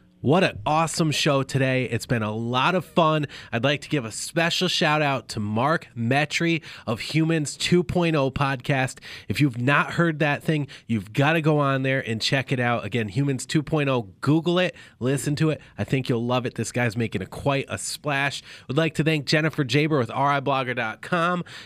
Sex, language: male, English